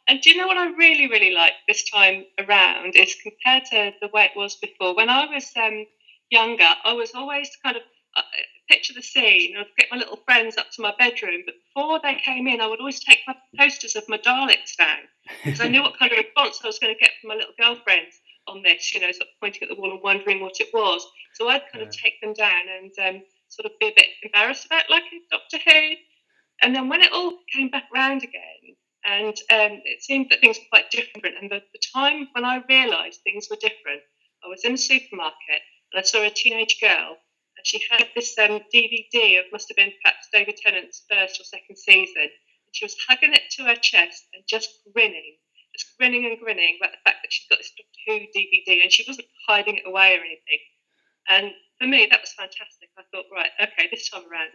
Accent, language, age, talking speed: British, English, 40-59, 230 wpm